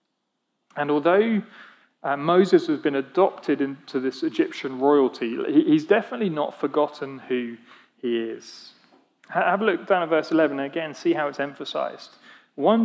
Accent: British